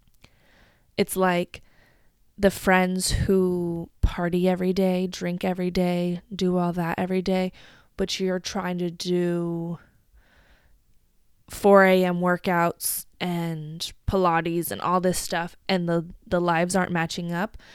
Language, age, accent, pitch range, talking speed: English, 20-39, American, 175-200 Hz, 125 wpm